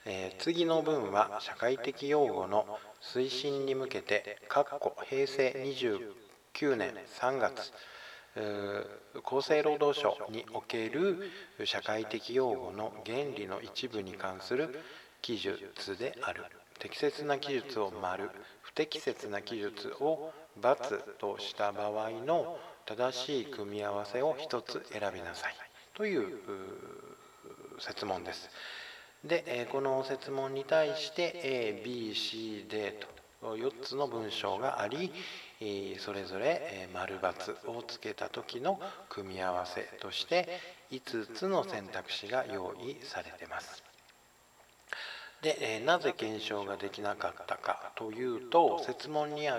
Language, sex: Japanese, male